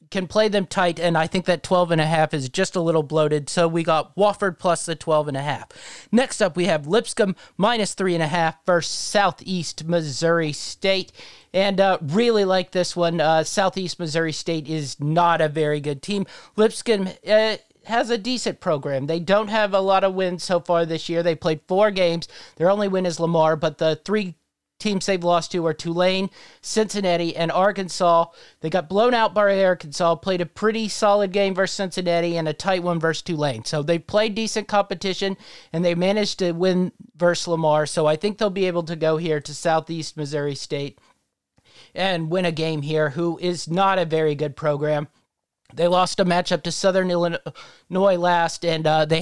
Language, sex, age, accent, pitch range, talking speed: English, male, 40-59, American, 160-195 Hz, 185 wpm